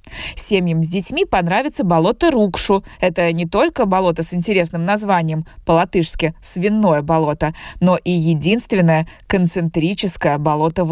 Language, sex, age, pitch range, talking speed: Russian, female, 20-39, 160-195 Hz, 120 wpm